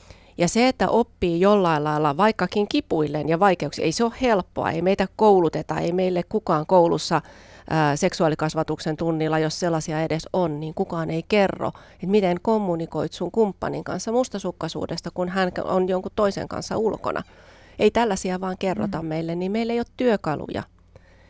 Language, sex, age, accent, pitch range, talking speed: Finnish, female, 30-49, native, 150-185 Hz, 160 wpm